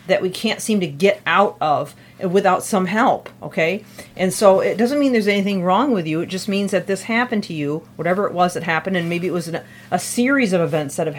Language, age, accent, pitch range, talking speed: English, 40-59, American, 175-210 Hz, 240 wpm